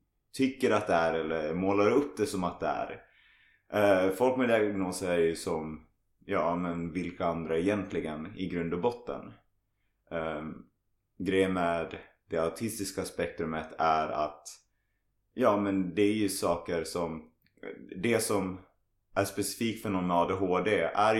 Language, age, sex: Swedish, 20-39, male